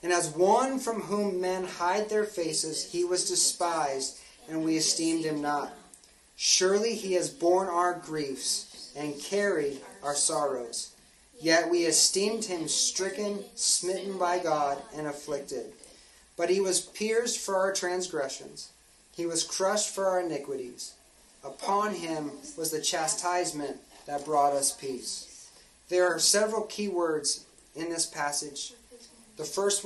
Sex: male